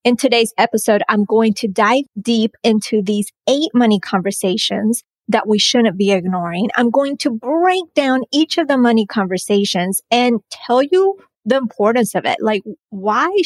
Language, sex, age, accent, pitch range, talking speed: English, female, 30-49, American, 195-240 Hz, 165 wpm